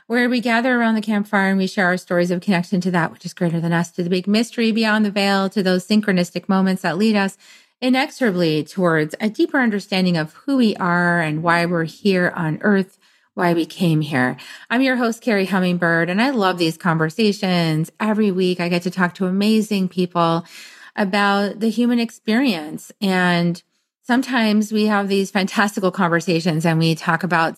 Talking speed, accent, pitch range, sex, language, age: 190 wpm, American, 175-215 Hz, female, English, 30-49